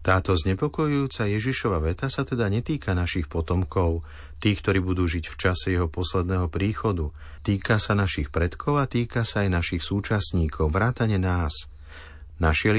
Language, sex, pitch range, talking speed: Slovak, male, 80-105 Hz, 145 wpm